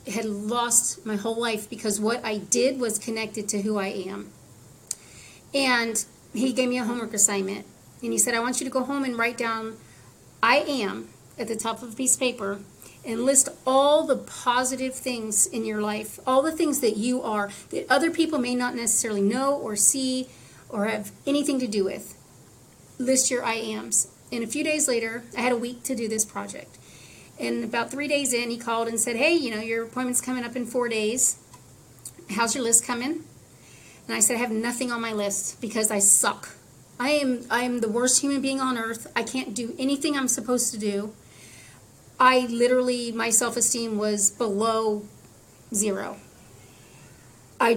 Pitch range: 210-255 Hz